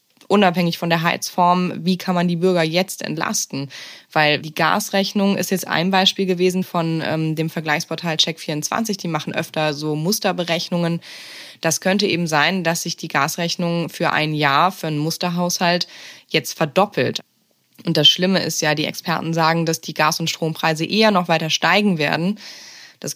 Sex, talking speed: female, 165 wpm